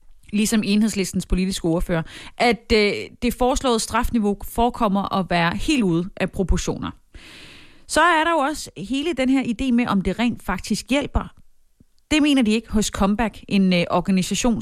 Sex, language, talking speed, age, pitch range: female, Danish, 155 wpm, 30-49, 185-245 Hz